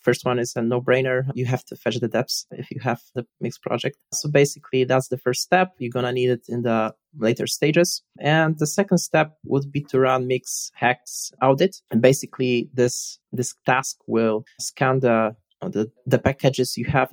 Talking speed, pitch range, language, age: 195 wpm, 120-140 Hz, English, 20-39